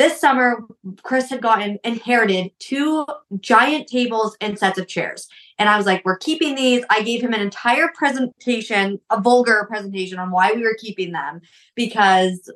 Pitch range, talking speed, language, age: 190-250 Hz, 170 wpm, English, 20-39